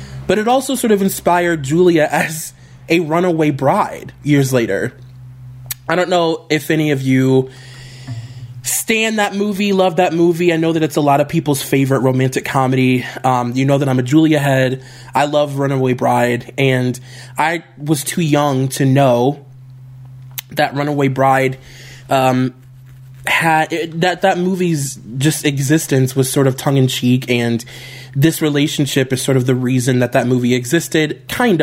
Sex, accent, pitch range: male, American, 130-160 Hz